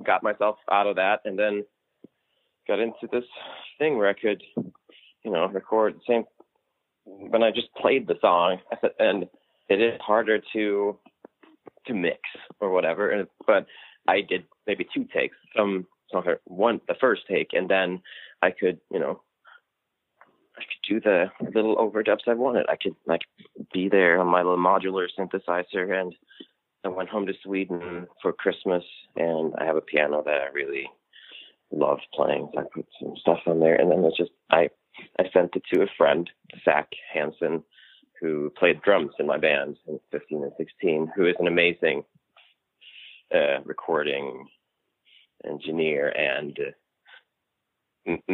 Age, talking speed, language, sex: 20-39, 160 wpm, English, male